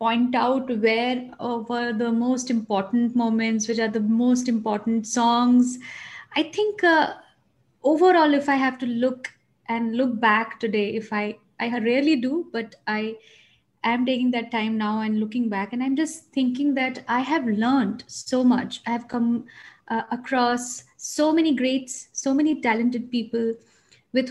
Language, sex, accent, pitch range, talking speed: English, female, Indian, 230-275 Hz, 160 wpm